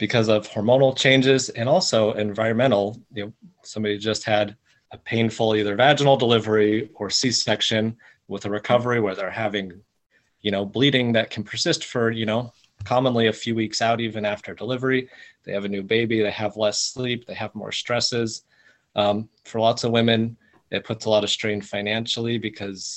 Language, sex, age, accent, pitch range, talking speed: English, male, 30-49, American, 105-120 Hz, 180 wpm